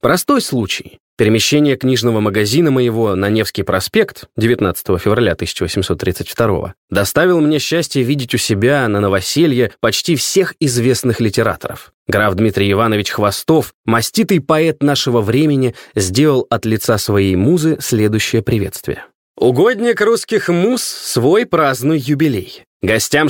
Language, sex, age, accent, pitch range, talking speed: Russian, male, 20-39, native, 115-155 Hz, 120 wpm